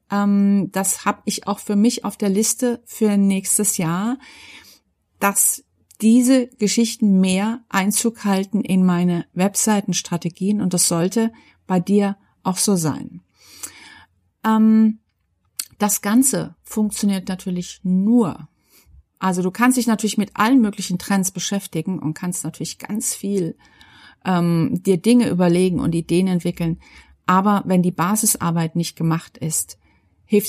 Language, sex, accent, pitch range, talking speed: German, female, German, 170-220 Hz, 125 wpm